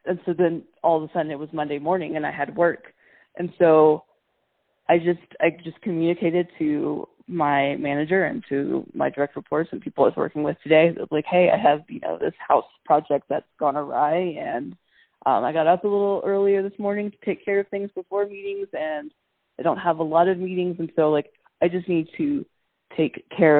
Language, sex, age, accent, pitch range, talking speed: English, female, 20-39, American, 155-200 Hz, 215 wpm